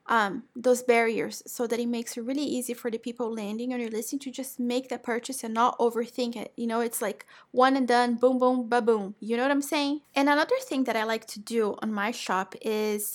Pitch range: 225-260 Hz